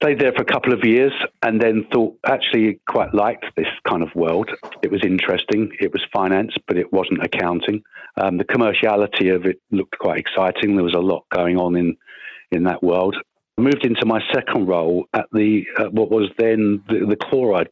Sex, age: male, 50-69